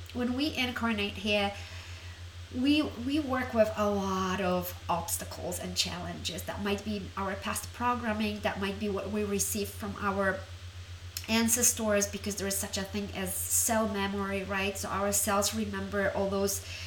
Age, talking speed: 30-49, 160 wpm